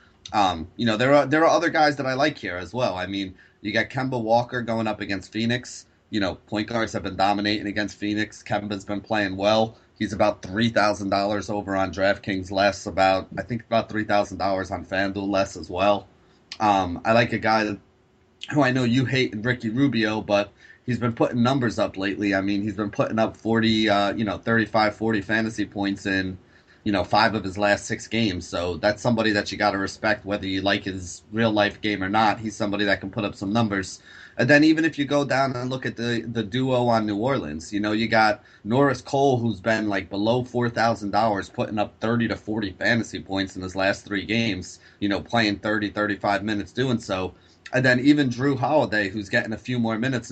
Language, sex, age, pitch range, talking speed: English, male, 30-49, 100-115 Hz, 215 wpm